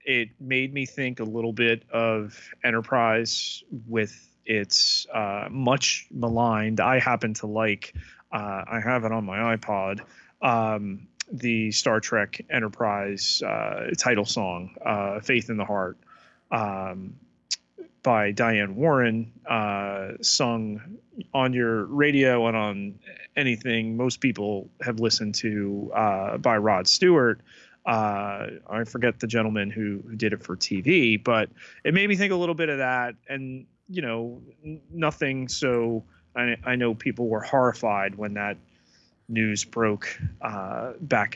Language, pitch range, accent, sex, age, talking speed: English, 105-125 Hz, American, male, 30-49, 140 wpm